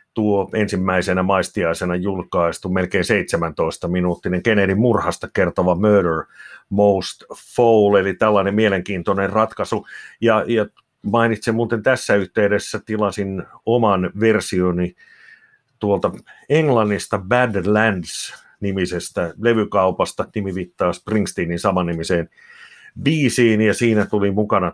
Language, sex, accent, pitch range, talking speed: Finnish, male, native, 95-120 Hz, 95 wpm